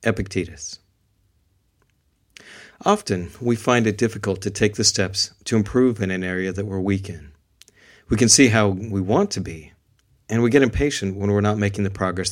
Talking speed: 180 wpm